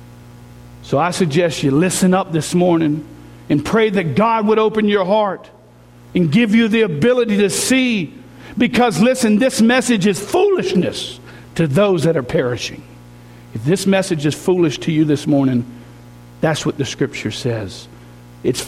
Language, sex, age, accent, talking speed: English, male, 50-69, American, 155 wpm